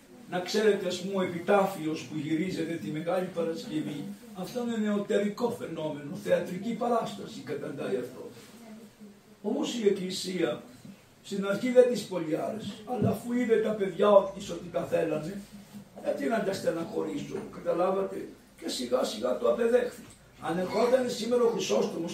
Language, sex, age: Greek, male, 60-79